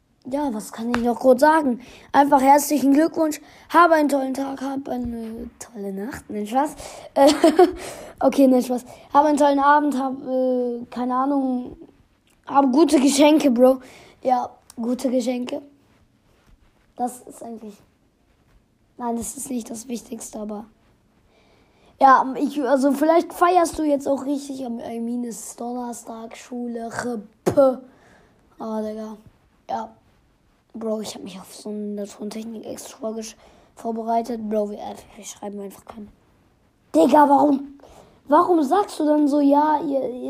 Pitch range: 235-290 Hz